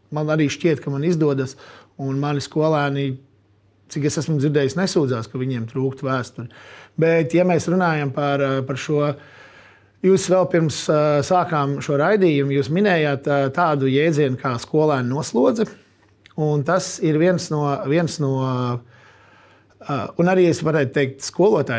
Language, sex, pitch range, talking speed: English, male, 130-160 Hz, 145 wpm